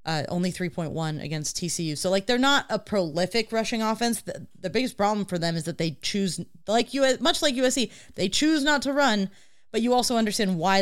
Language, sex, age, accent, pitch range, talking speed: English, female, 30-49, American, 155-190 Hz, 210 wpm